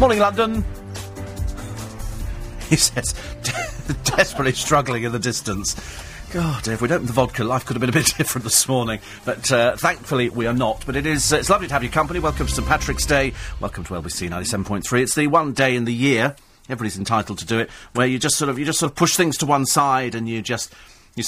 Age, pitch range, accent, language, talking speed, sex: 40-59, 105-150 Hz, British, English, 220 wpm, male